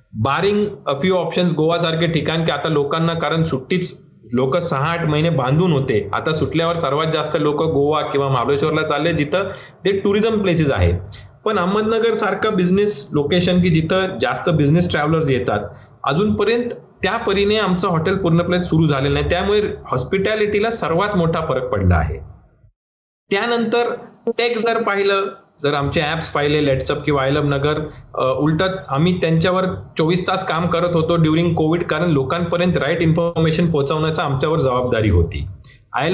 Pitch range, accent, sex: 140-185 Hz, native, male